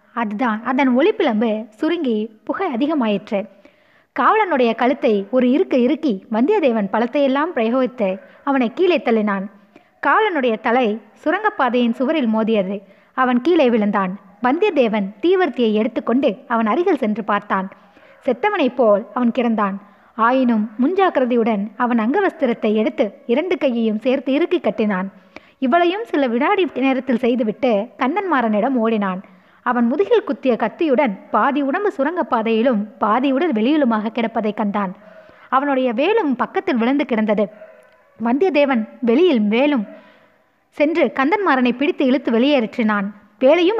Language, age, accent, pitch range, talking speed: Tamil, 20-39, native, 220-285 Hz, 110 wpm